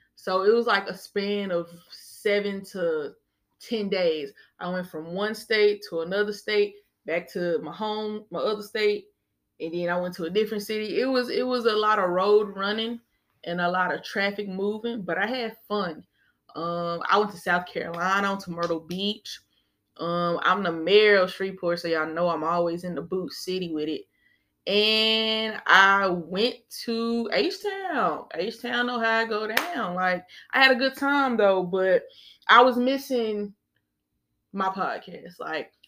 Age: 20-39